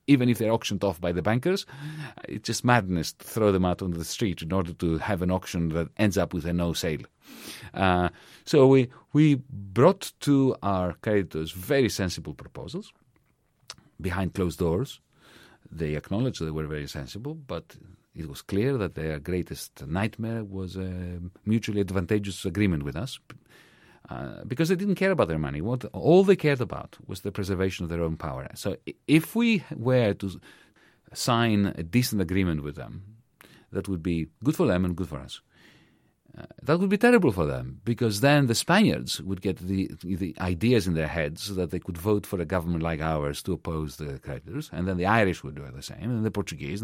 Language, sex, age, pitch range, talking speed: English, male, 40-59, 85-115 Hz, 195 wpm